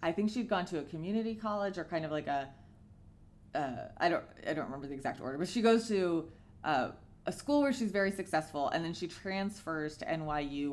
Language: English